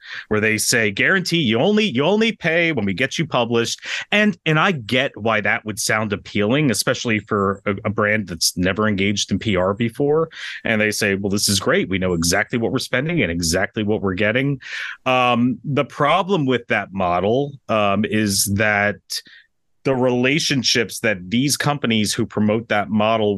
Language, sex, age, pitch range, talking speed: English, male, 30-49, 105-130 Hz, 180 wpm